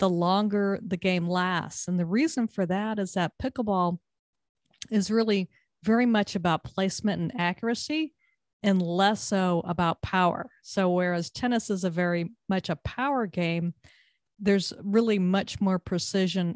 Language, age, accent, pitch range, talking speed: English, 40-59, American, 180-205 Hz, 150 wpm